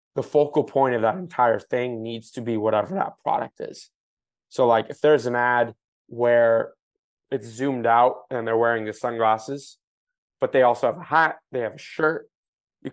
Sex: male